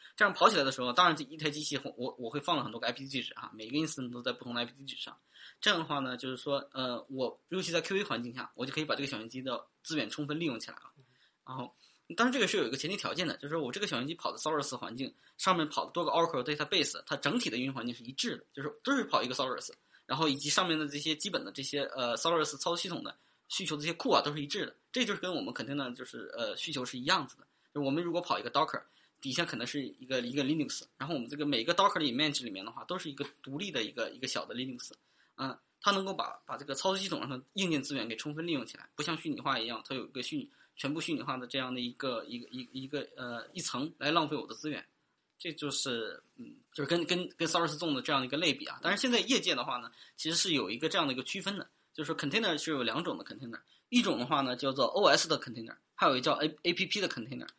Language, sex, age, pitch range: English, male, 20-39, 130-170 Hz